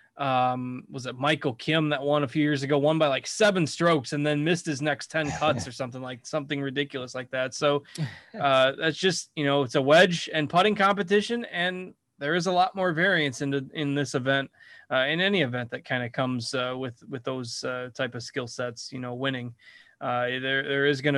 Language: English